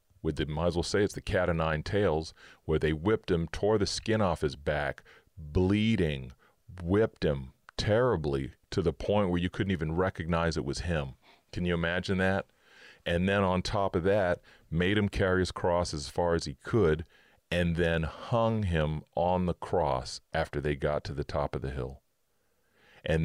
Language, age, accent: English, 40-59, American